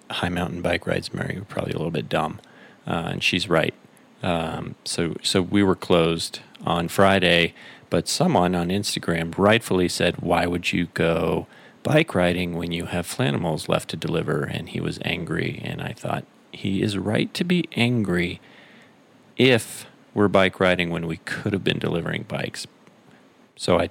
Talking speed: 170 wpm